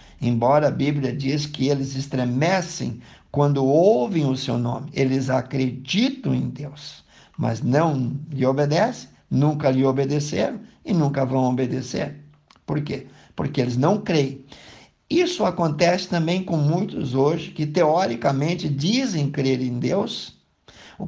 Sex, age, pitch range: male, 50-69, 135-165 Hz